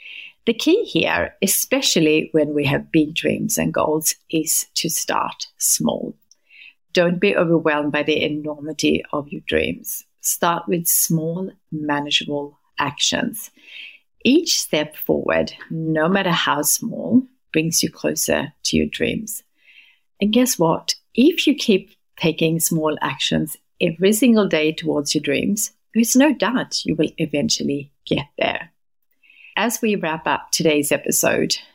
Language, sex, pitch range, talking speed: English, female, 150-195 Hz, 135 wpm